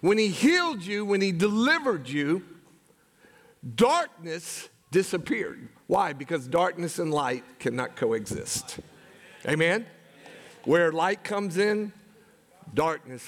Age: 50-69